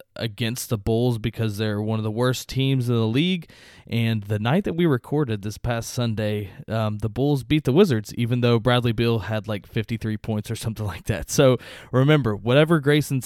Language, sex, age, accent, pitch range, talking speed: English, male, 20-39, American, 110-130 Hz, 200 wpm